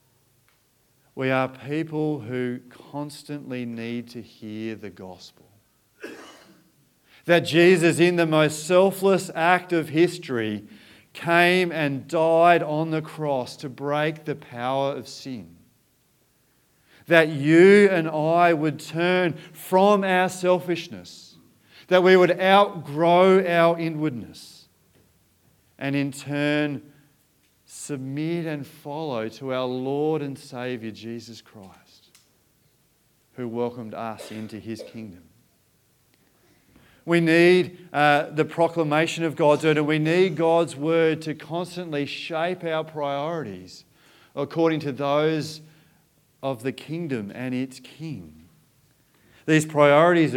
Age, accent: 40-59, Australian